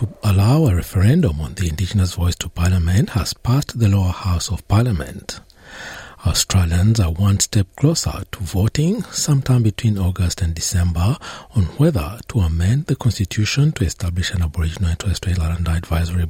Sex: male